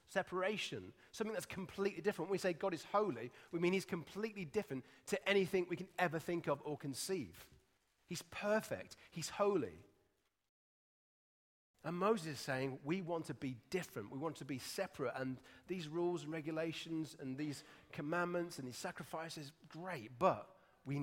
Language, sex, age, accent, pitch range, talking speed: English, male, 30-49, British, 145-195 Hz, 165 wpm